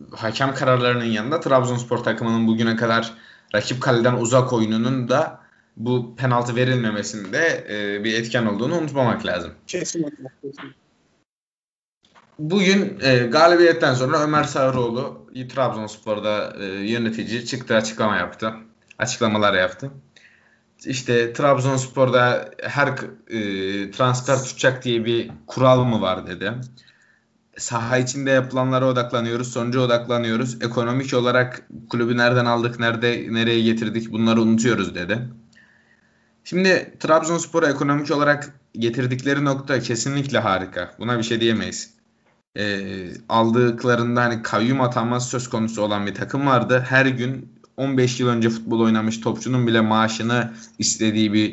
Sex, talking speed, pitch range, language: male, 110 wpm, 110-130 Hz, Turkish